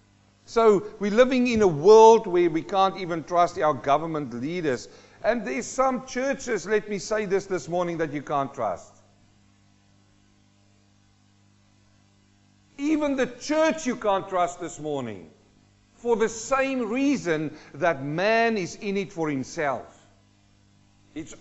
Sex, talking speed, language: male, 135 wpm, English